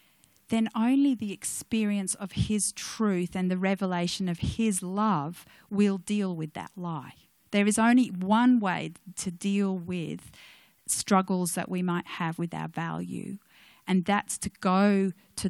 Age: 40-59